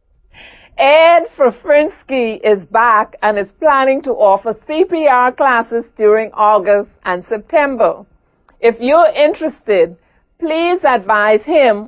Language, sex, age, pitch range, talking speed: English, female, 60-79, 210-285 Hz, 105 wpm